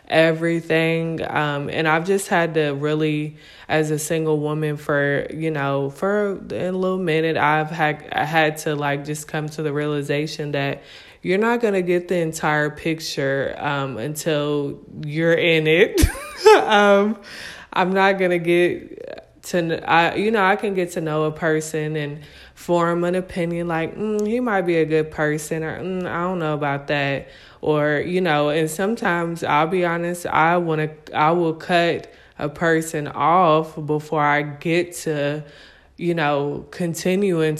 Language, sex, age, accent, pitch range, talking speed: English, female, 20-39, American, 150-175 Hz, 165 wpm